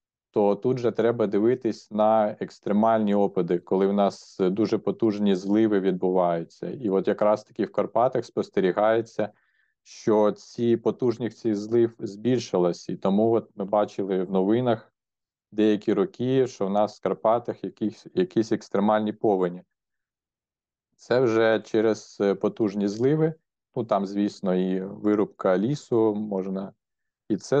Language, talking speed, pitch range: Ukrainian, 130 wpm, 95-110 Hz